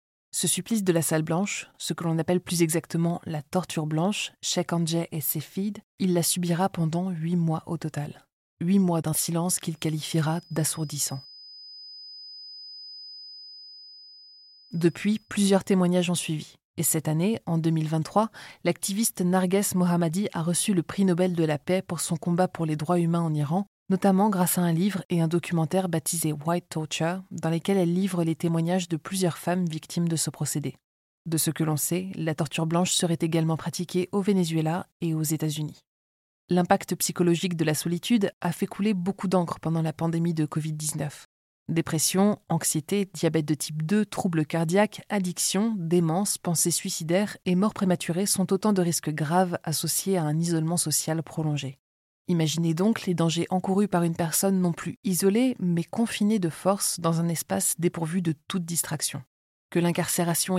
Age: 20-39